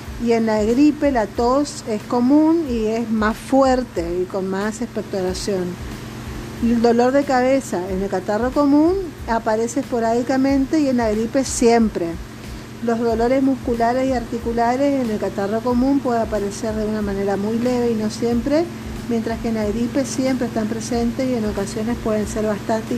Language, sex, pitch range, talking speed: Spanish, female, 215-260 Hz, 165 wpm